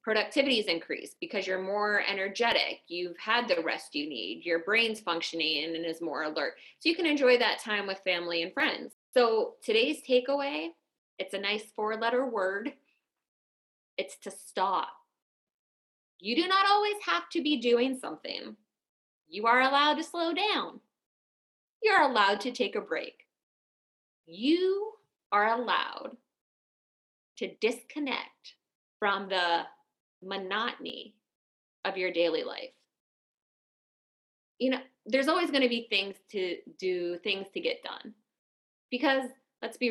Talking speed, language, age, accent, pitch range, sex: 140 wpm, English, 20-39, American, 200-290 Hz, female